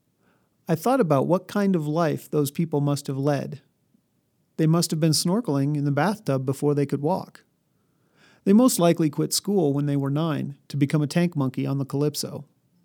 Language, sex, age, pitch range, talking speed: English, male, 40-59, 145-180 Hz, 190 wpm